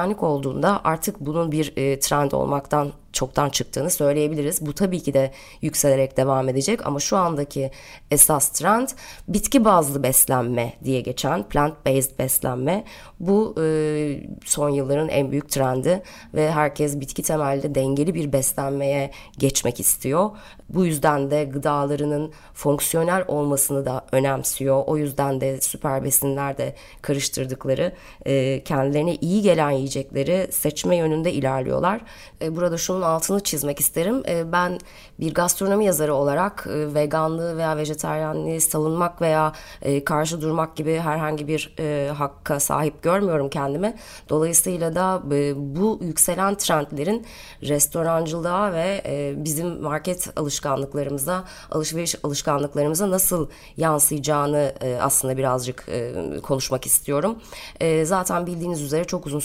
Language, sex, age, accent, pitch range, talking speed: Turkish, female, 20-39, native, 140-165 Hz, 120 wpm